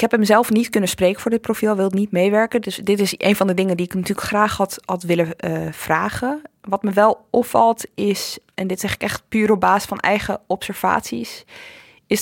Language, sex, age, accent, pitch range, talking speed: Dutch, female, 20-39, Dutch, 180-220 Hz, 225 wpm